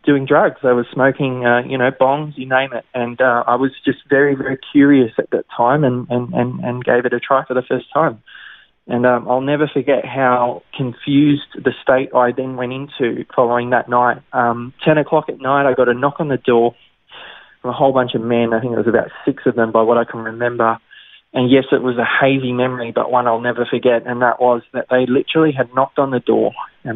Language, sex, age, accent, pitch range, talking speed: English, male, 20-39, Australian, 120-135 Hz, 235 wpm